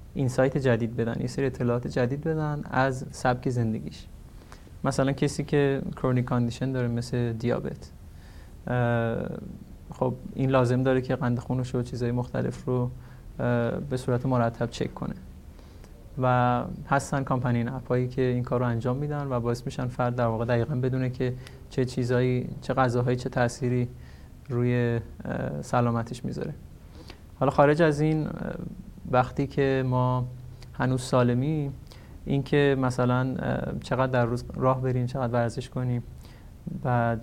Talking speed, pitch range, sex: 130 wpm, 120-130 Hz, male